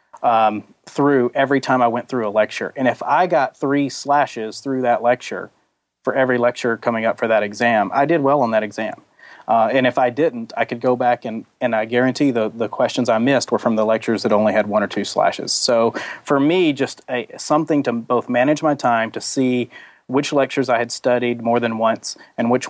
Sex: male